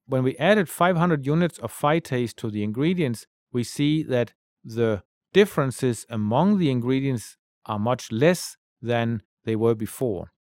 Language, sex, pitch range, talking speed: English, male, 110-150 Hz, 145 wpm